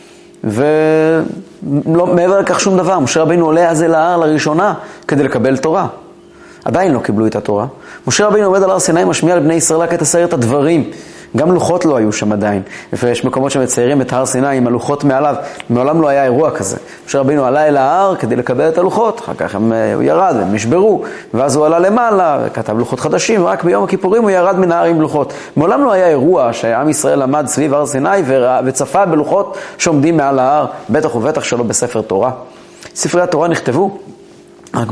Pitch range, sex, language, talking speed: 130-180 Hz, male, Hebrew, 185 wpm